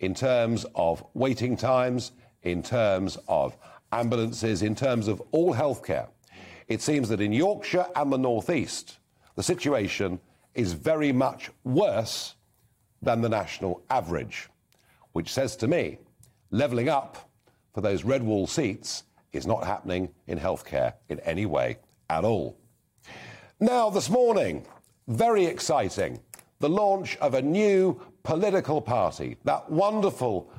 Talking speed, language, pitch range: 135 wpm, English, 110-145 Hz